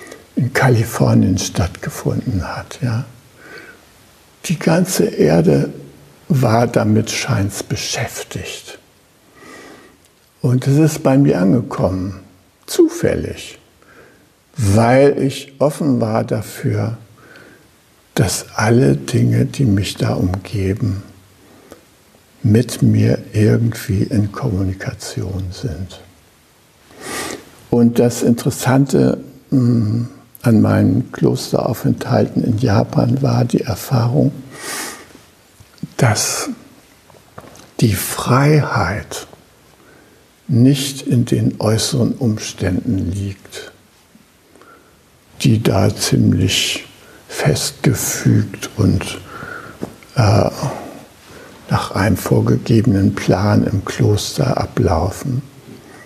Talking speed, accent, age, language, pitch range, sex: 75 wpm, German, 60-79, German, 100-135 Hz, male